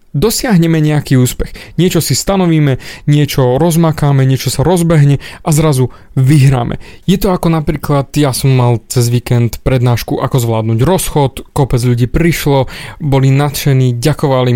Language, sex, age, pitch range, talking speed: Slovak, male, 20-39, 130-170 Hz, 135 wpm